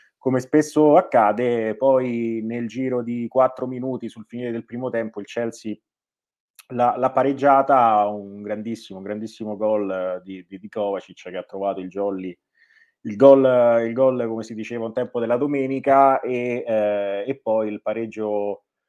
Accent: native